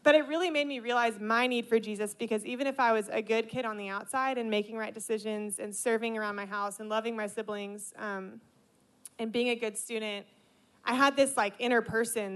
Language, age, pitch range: English, 20-39, 210-245 Hz